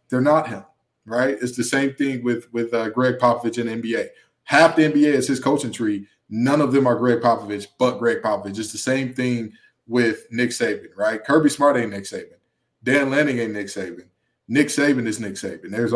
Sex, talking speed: male, 205 wpm